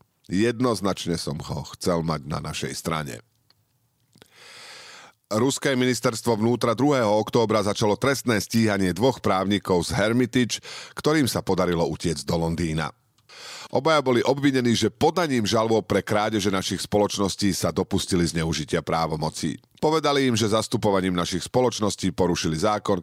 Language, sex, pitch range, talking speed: Slovak, male, 90-125 Hz, 125 wpm